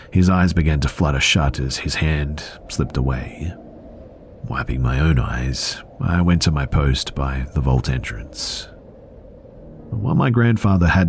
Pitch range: 70-85 Hz